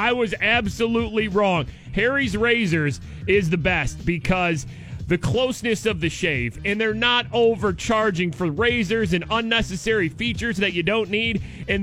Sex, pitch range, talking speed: male, 170-225 Hz, 145 wpm